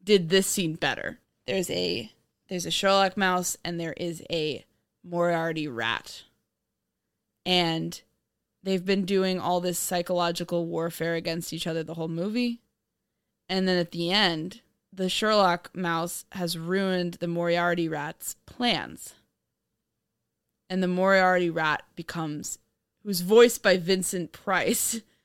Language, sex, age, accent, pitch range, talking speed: English, female, 20-39, American, 165-195 Hz, 130 wpm